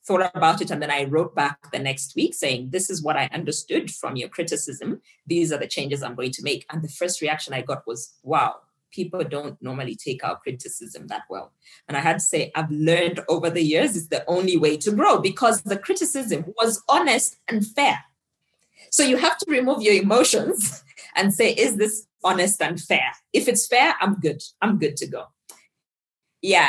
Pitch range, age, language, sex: 155-205 Hz, 20-39, English, female